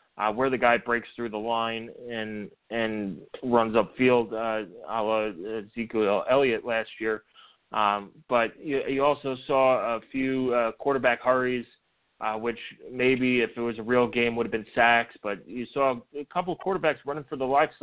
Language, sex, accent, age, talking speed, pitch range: English, male, American, 20-39, 180 wpm, 110-130 Hz